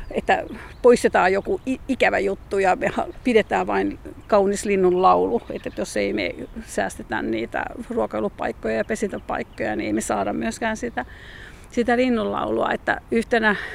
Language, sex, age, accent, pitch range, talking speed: Finnish, female, 50-69, native, 205-250 Hz, 125 wpm